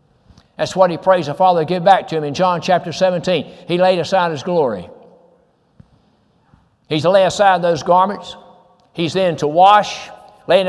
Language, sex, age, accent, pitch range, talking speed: English, male, 60-79, American, 160-200 Hz, 175 wpm